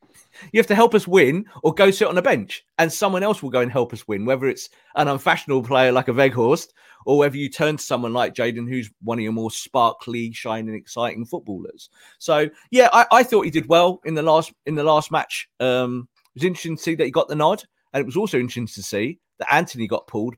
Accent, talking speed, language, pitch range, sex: British, 245 wpm, English, 115-165 Hz, male